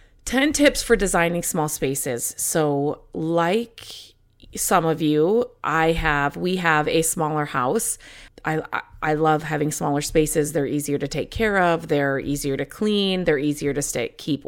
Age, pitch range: 30-49, 145-180 Hz